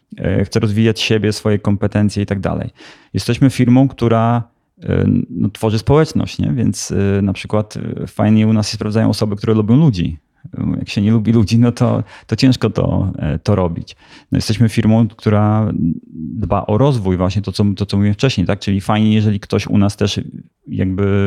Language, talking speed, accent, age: Polish, 175 wpm, native, 30-49